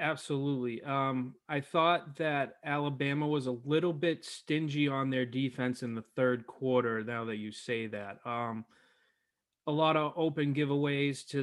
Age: 20-39